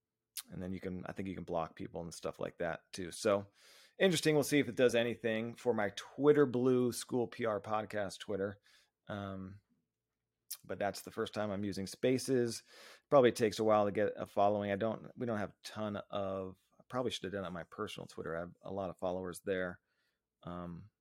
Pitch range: 100-130 Hz